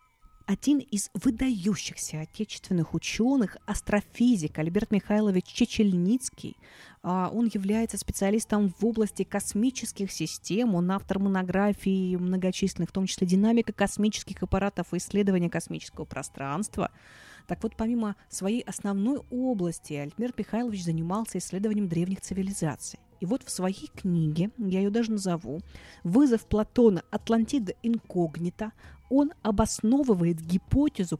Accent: native